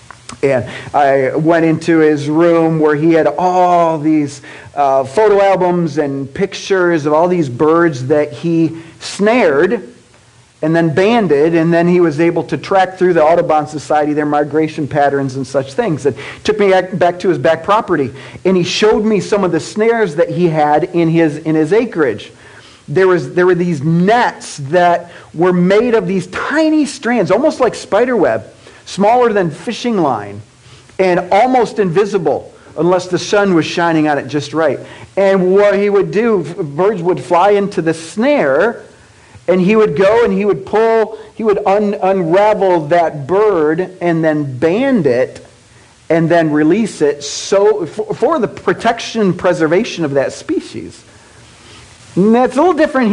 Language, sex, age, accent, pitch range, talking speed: English, male, 40-59, American, 155-200 Hz, 165 wpm